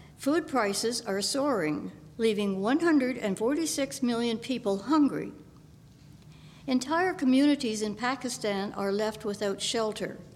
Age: 60-79